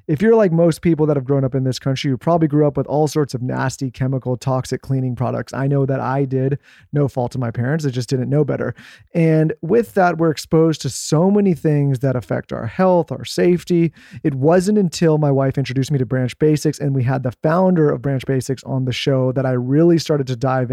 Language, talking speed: English, 235 wpm